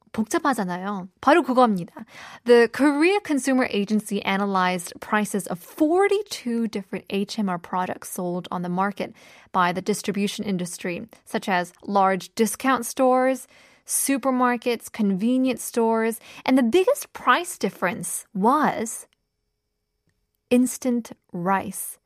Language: Korean